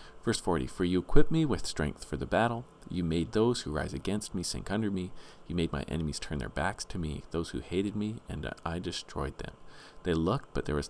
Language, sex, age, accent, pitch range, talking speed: English, male, 40-59, American, 75-100 Hz, 235 wpm